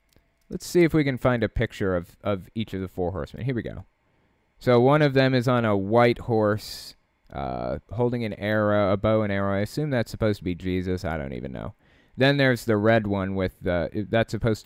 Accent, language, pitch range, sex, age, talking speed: American, English, 95-125 Hz, male, 20-39, 225 wpm